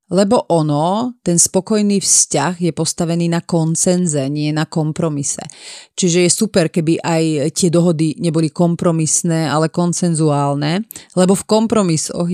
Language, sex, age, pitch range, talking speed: Slovak, female, 30-49, 155-185 Hz, 125 wpm